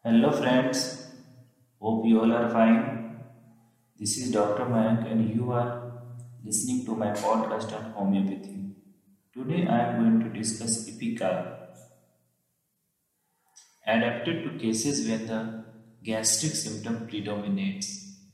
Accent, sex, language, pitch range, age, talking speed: Indian, male, English, 110-135 Hz, 30-49, 115 wpm